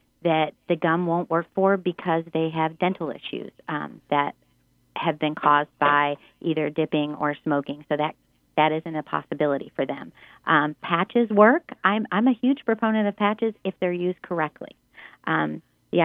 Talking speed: 170 wpm